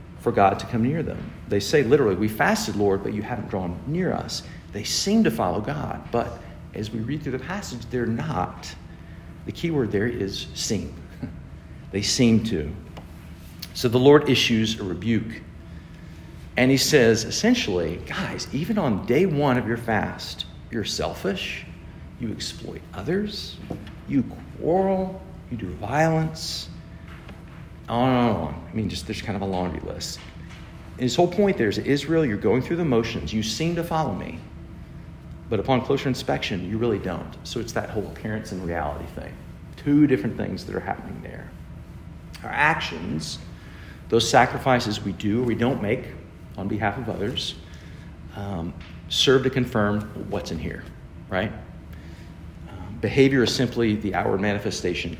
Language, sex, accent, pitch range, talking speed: English, male, American, 85-120 Hz, 160 wpm